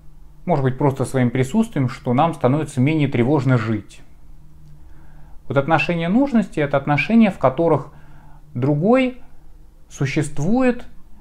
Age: 20-39